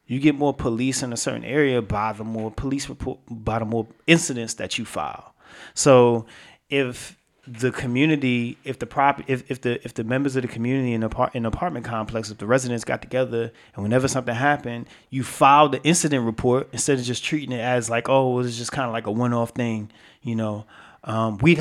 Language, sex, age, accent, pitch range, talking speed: English, male, 30-49, American, 115-135 Hz, 210 wpm